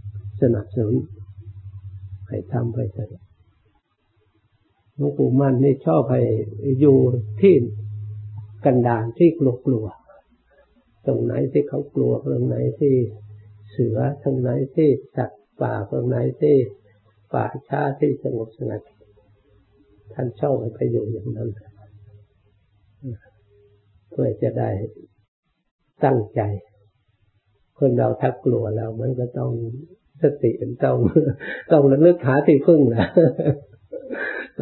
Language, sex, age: Thai, male, 60-79